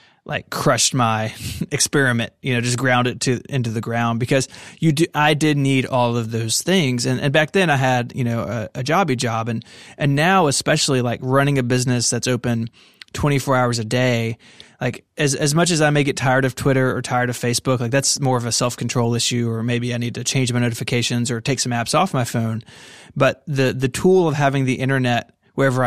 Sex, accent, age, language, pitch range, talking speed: male, American, 20-39, English, 120-140 Hz, 220 wpm